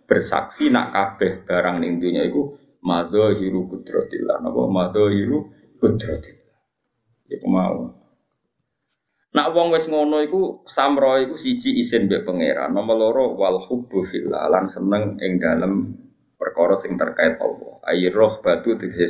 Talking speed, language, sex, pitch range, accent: 130 wpm, Indonesian, male, 95-150 Hz, native